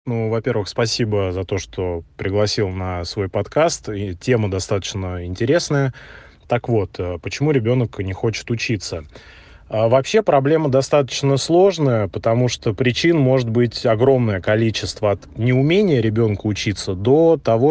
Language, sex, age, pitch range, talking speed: Russian, male, 20-39, 105-125 Hz, 125 wpm